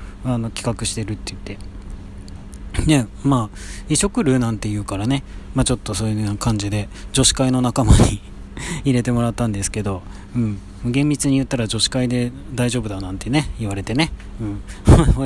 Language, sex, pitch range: Japanese, male, 100-125 Hz